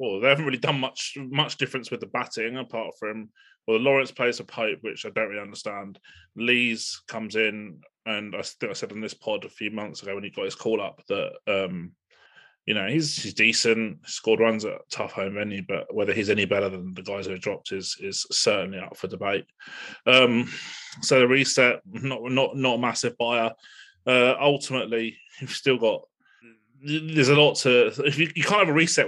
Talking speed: 205 wpm